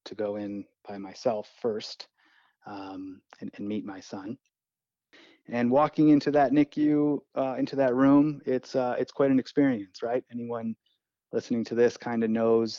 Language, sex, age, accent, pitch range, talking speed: English, male, 30-49, American, 105-120 Hz, 165 wpm